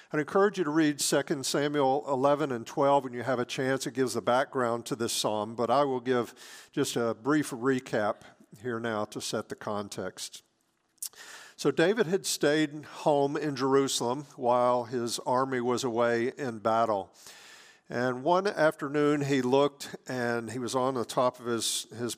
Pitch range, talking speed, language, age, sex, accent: 115-140 Hz, 175 wpm, English, 50-69, male, American